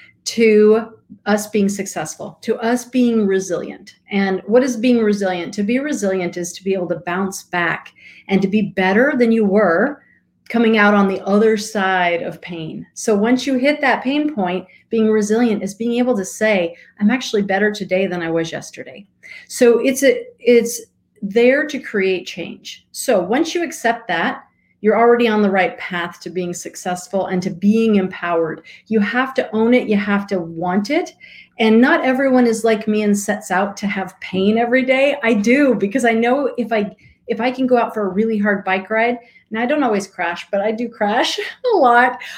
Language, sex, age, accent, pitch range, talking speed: English, female, 40-59, American, 190-245 Hz, 195 wpm